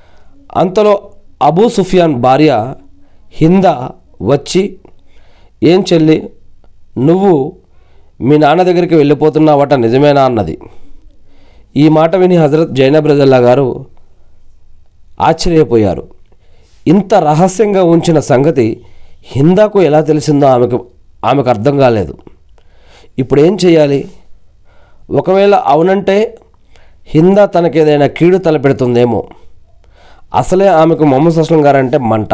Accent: native